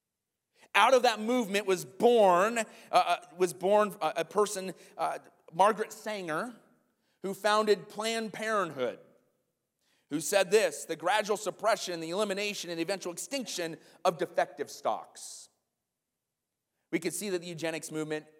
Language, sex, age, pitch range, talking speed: English, male, 30-49, 140-215 Hz, 130 wpm